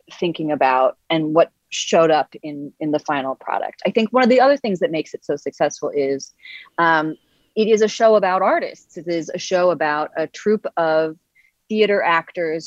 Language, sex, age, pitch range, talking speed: English, female, 30-49, 160-215 Hz, 195 wpm